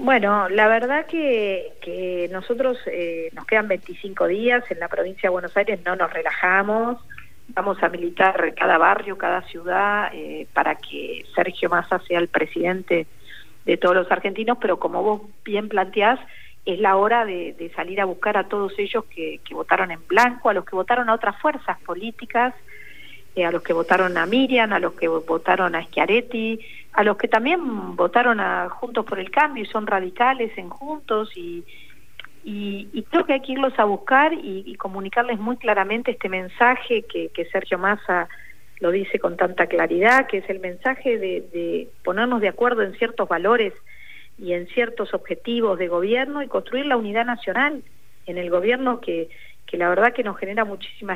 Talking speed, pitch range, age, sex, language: 185 wpm, 180-240 Hz, 50-69, female, Spanish